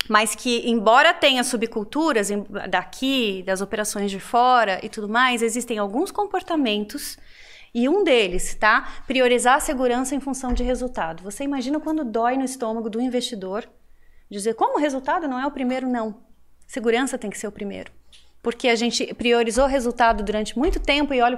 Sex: female